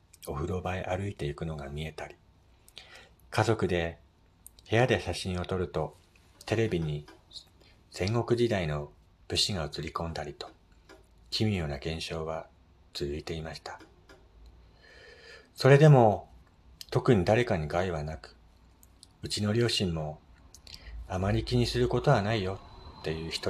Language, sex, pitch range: Japanese, male, 80-100 Hz